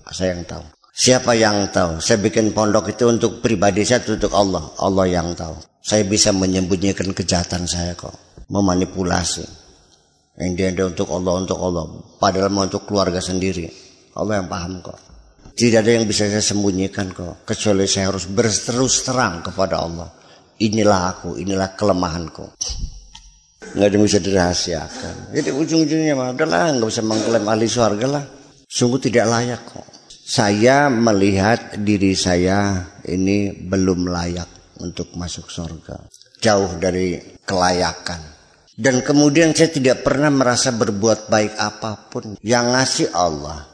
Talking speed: 135 wpm